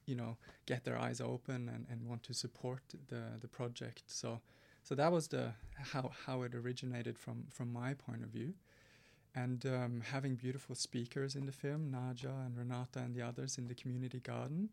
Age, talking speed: 30-49, 190 wpm